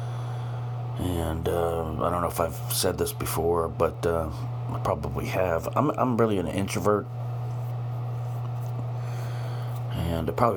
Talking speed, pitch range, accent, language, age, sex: 125 wpm, 105-120 Hz, American, English, 60-79, male